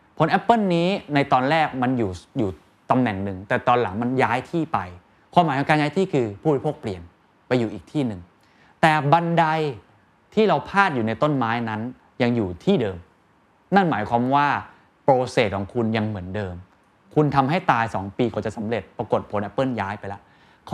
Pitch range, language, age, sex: 105-155 Hz, Thai, 20-39, male